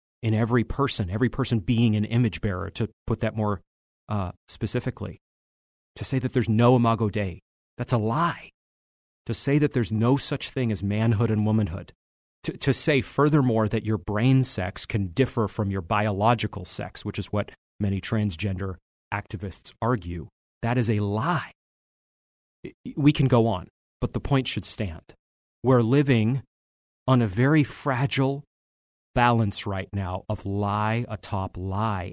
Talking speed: 155 wpm